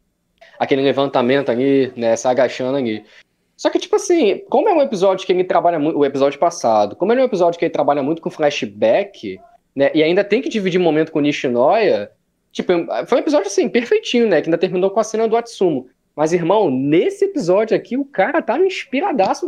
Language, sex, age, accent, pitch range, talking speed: Portuguese, male, 20-39, Brazilian, 140-220 Hz, 205 wpm